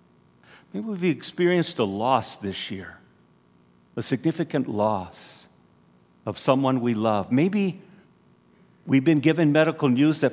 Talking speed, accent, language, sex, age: 120 wpm, American, English, male, 50-69